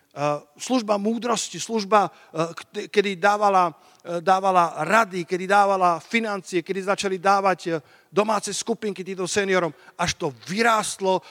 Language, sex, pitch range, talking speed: Slovak, male, 150-200 Hz, 105 wpm